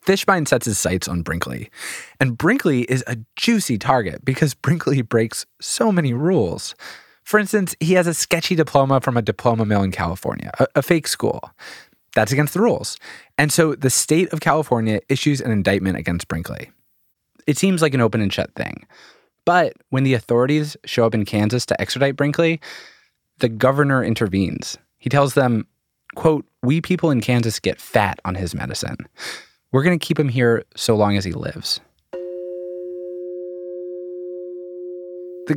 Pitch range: 110-155 Hz